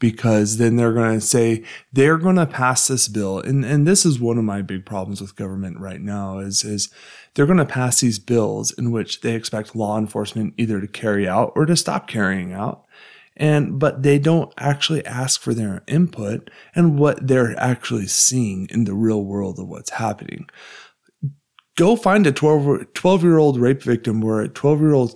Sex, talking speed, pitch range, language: male, 190 wpm, 110-140 Hz, English